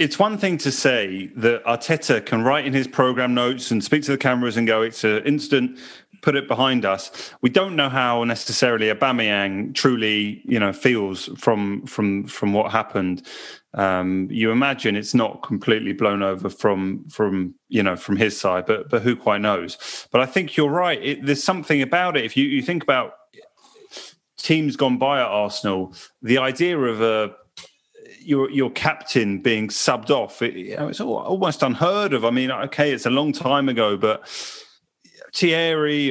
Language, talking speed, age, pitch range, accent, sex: English, 185 wpm, 30-49, 115-150 Hz, British, male